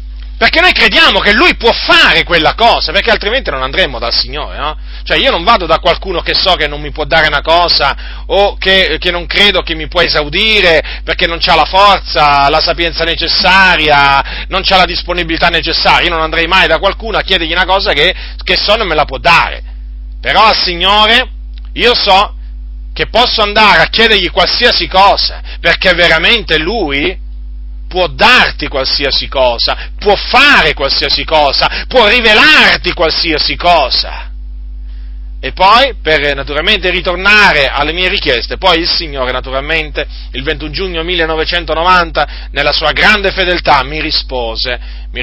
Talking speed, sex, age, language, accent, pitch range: 160 wpm, male, 40-59, Italian, native, 140-190 Hz